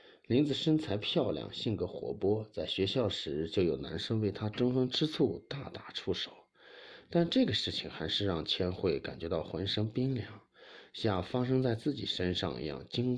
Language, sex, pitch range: Chinese, male, 95-125 Hz